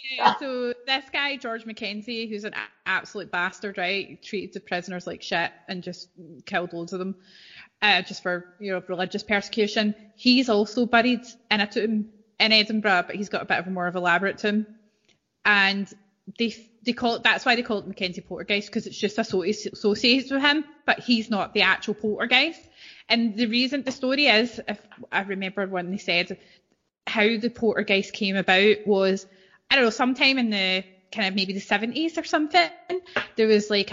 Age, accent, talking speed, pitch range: 20-39, British, 190 wpm, 190-230 Hz